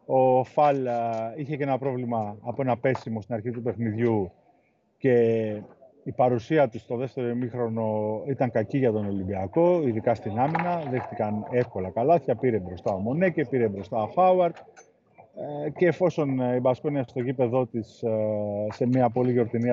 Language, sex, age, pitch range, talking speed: Greek, male, 30-49, 110-140 Hz, 155 wpm